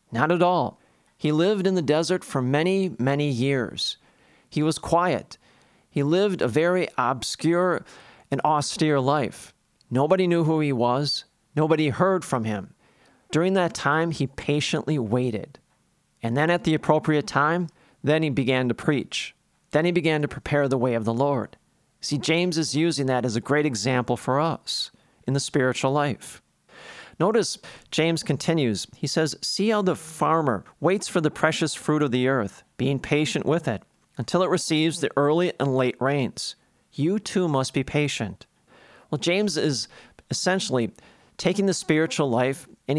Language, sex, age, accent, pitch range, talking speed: English, male, 40-59, American, 130-165 Hz, 165 wpm